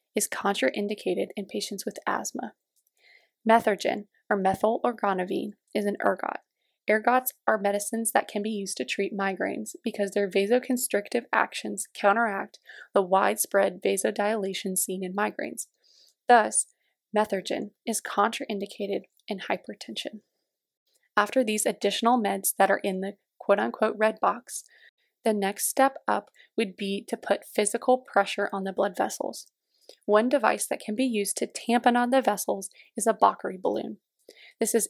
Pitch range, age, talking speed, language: 200-240 Hz, 20-39, 140 wpm, English